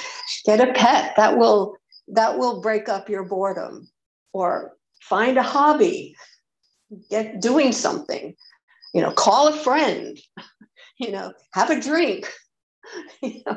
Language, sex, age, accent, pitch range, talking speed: English, female, 60-79, American, 210-290 Hz, 130 wpm